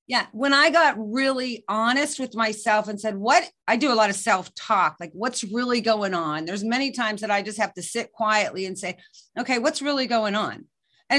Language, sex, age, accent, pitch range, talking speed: English, female, 40-59, American, 200-250 Hz, 215 wpm